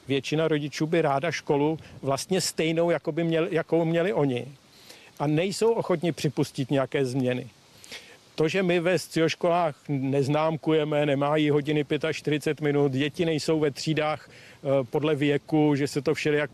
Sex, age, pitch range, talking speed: male, 50-69, 140-165 Hz, 135 wpm